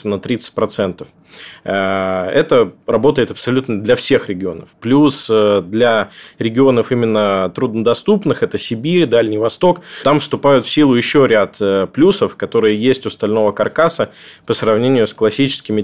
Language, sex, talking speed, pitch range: Russian, male, 125 wpm, 110-140 Hz